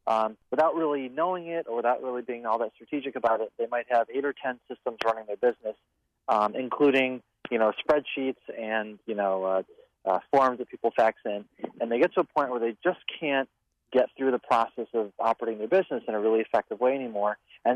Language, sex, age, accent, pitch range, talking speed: English, male, 30-49, American, 110-130 Hz, 215 wpm